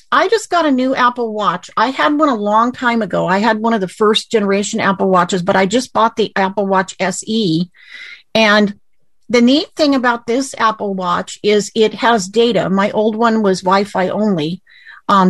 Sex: female